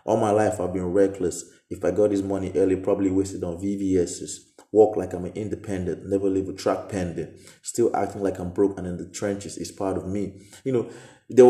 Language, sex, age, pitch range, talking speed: English, male, 20-39, 95-115 Hz, 220 wpm